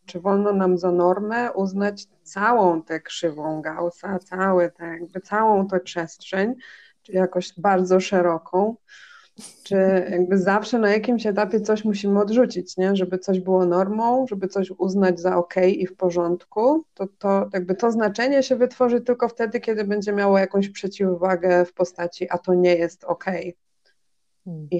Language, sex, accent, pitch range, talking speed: Polish, female, native, 175-195 Hz, 155 wpm